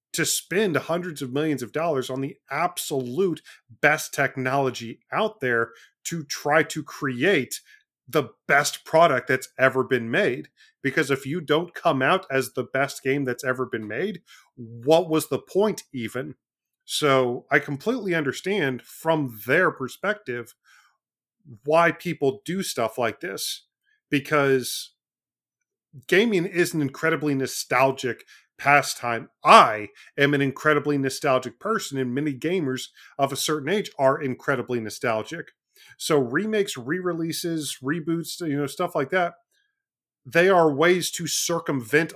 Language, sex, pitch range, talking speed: English, male, 130-175 Hz, 135 wpm